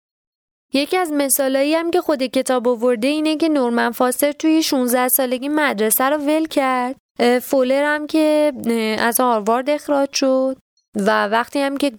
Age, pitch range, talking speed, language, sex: 20-39, 195-265 Hz, 155 wpm, Persian, female